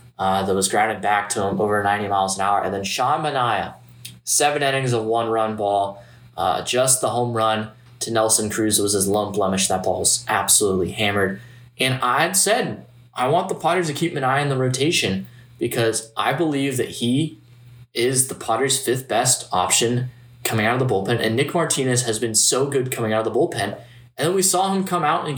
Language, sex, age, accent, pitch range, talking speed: English, male, 10-29, American, 105-125 Hz, 210 wpm